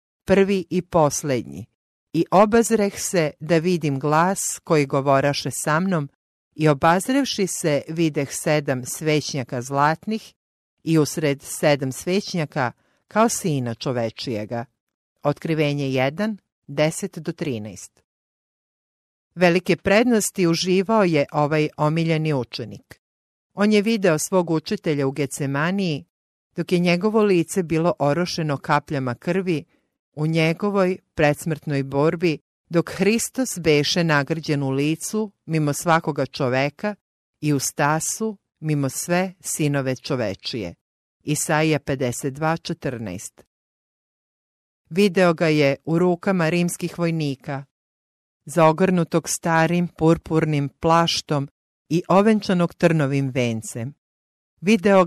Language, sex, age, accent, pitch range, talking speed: English, female, 50-69, Croatian, 140-180 Hz, 100 wpm